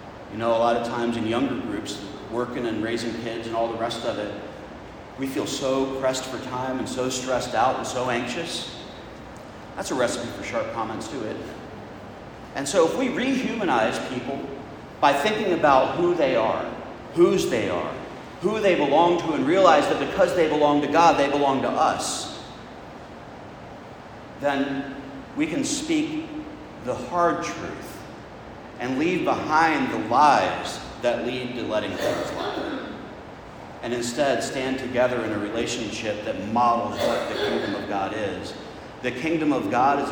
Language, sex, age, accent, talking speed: English, male, 40-59, American, 165 wpm